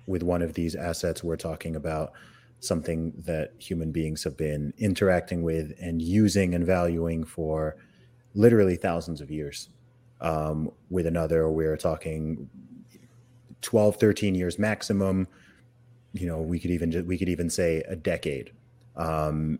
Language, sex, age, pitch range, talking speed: English, male, 30-49, 80-95 Hz, 140 wpm